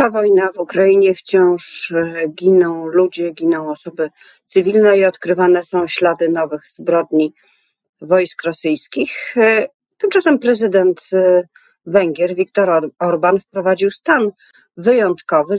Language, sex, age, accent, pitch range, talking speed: Polish, female, 40-59, native, 155-200 Hz, 95 wpm